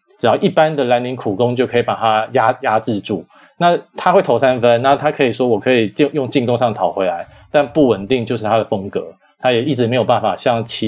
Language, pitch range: Chinese, 110-145 Hz